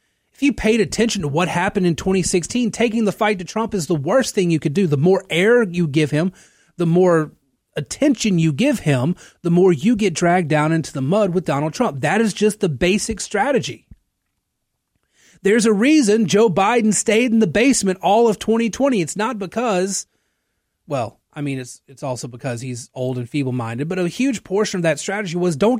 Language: English